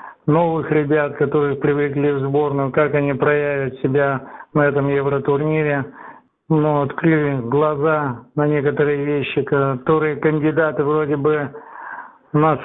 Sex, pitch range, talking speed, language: male, 140-155 Hz, 115 wpm, Russian